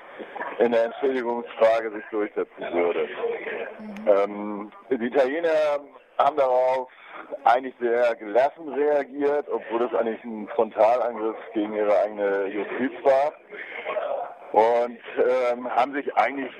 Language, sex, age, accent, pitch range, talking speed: German, male, 50-69, German, 115-140 Hz, 110 wpm